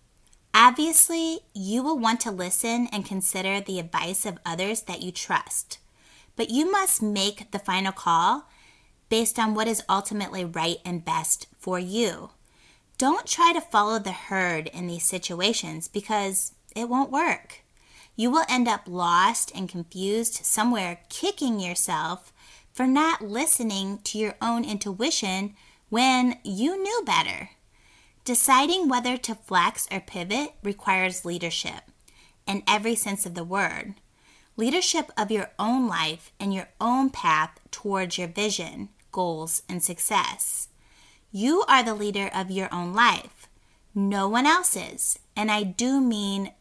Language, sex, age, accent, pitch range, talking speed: English, female, 20-39, American, 185-250 Hz, 145 wpm